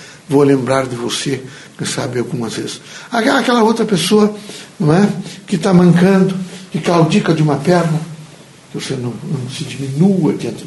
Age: 60-79